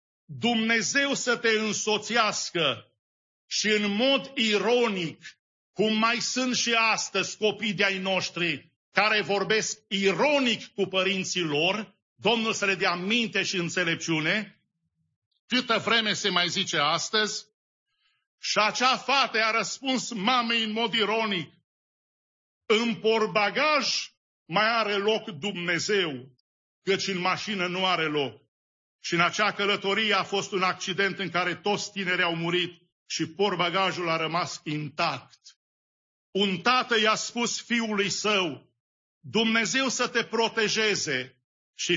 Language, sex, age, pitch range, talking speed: English, male, 50-69, 175-220 Hz, 125 wpm